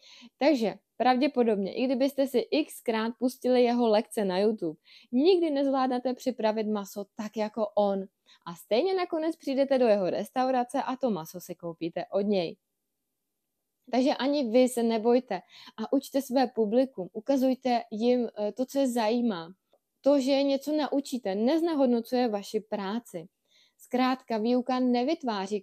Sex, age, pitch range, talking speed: female, 20-39, 205-255 Hz, 135 wpm